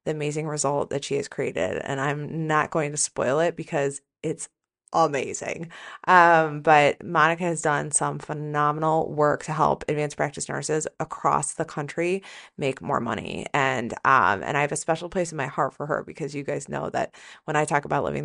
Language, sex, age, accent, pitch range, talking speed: English, female, 30-49, American, 150-170 Hz, 195 wpm